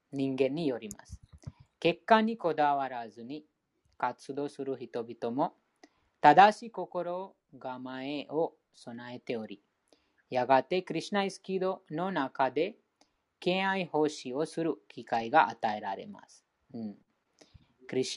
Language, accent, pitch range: Japanese, Indian, 130-180 Hz